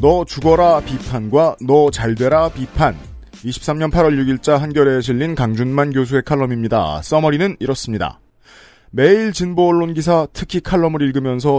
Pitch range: 125-155 Hz